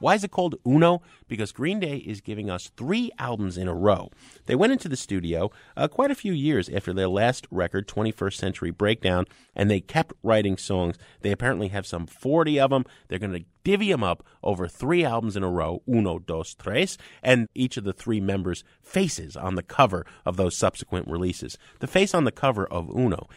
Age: 30-49